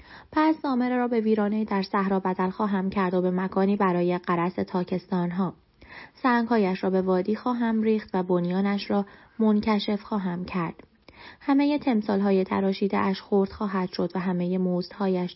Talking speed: 170 wpm